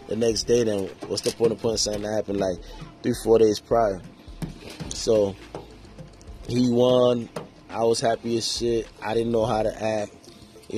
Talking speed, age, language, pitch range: 185 wpm, 20-39, English, 105-120 Hz